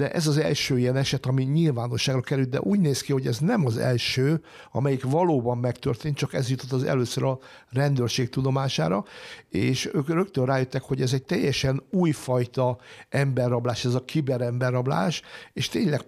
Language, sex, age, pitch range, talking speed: Hungarian, male, 60-79, 125-145 Hz, 165 wpm